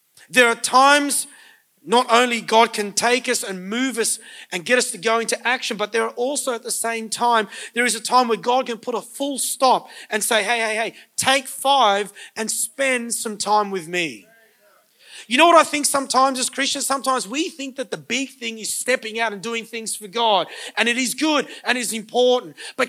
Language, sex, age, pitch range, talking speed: English, male, 30-49, 220-270 Hz, 215 wpm